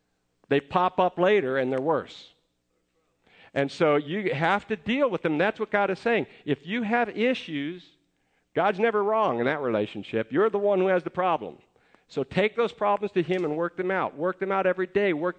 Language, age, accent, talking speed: English, 50-69, American, 205 wpm